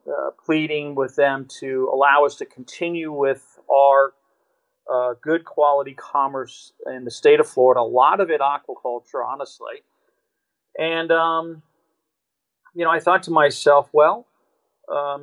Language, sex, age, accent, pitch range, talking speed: English, male, 40-59, American, 140-220 Hz, 140 wpm